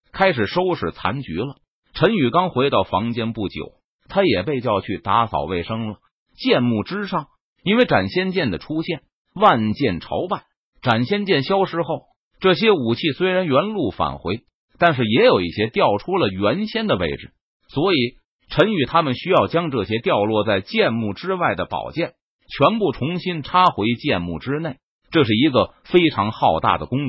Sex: male